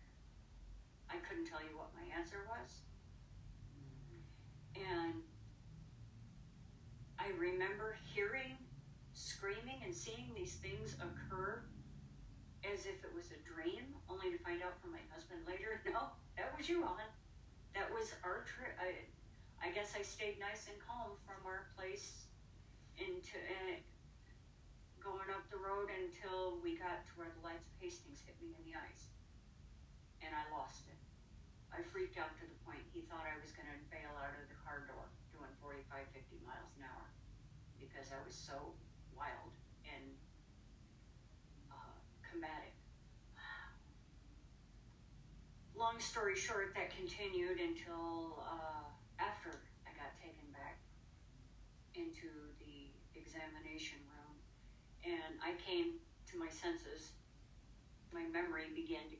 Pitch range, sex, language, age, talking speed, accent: 135-200 Hz, female, English, 40-59, 135 wpm, American